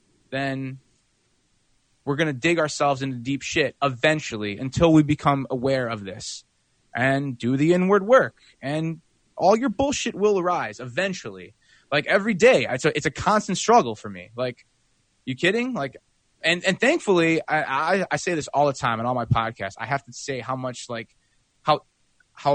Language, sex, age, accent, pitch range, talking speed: English, male, 20-39, American, 120-155 Hz, 175 wpm